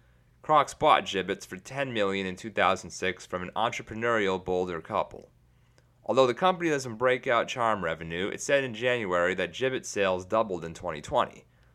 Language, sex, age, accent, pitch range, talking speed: English, male, 30-49, American, 95-130 Hz, 160 wpm